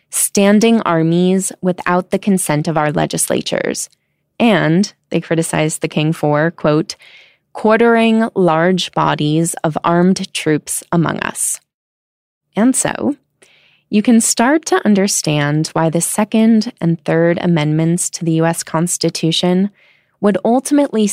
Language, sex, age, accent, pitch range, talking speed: English, female, 20-39, American, 160-205 Hz, 120 wpm